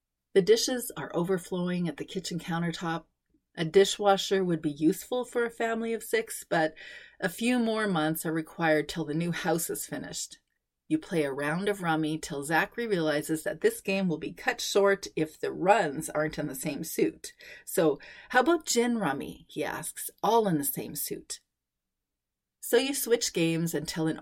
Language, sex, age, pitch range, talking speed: English, female, 40-59, 155-210 Hz, 180 wpm